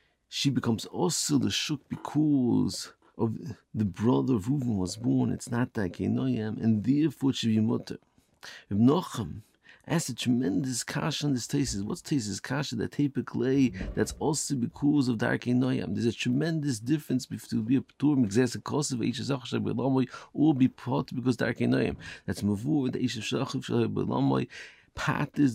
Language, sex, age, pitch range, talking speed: English, male, 50-69, 110-135 Hz, 165 wpm